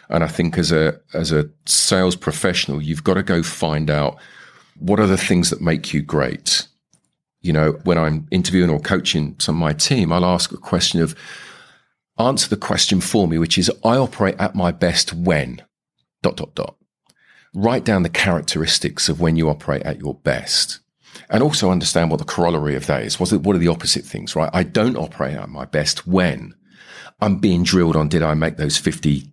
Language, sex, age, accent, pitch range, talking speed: English, male, 40-59, British, 75-100 Hz, 200 wpm